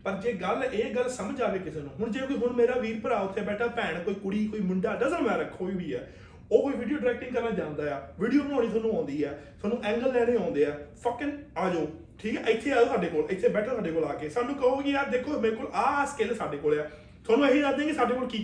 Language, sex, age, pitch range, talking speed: Punjabi, male, 30-49, 220-290 Hz, 255 wpm